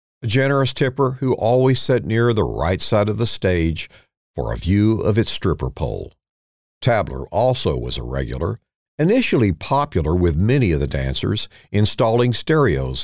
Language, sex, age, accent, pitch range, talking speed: English, male, 50-69, American, 95-130 Hz, 155 wpm